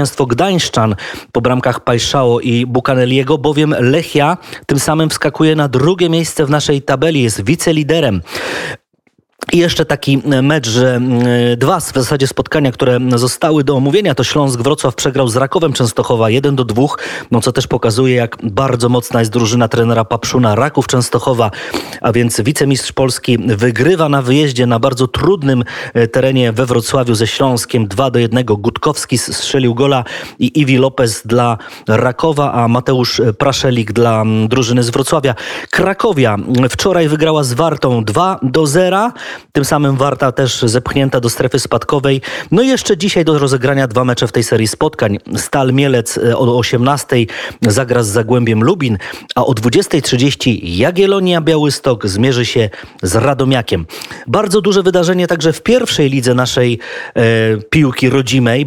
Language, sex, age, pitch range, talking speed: Polish, male, 20-39, 120-150 Hz, 140 wpm